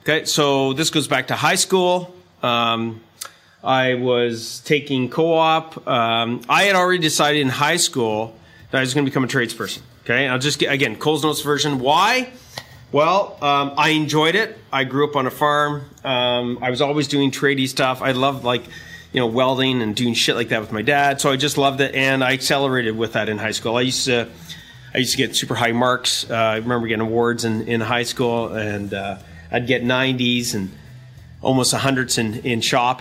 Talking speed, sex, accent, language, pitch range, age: 205 wpm, male, American, English, 120-150 Hz, 30-49